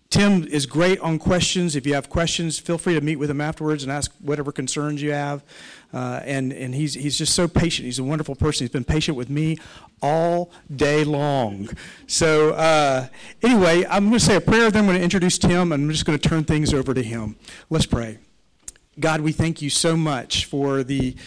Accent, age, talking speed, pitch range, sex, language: American, 50-69, 215 wpm, 135-160 Hz, male, English